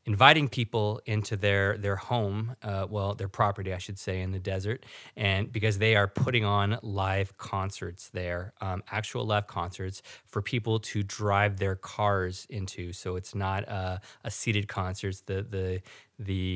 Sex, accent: male, American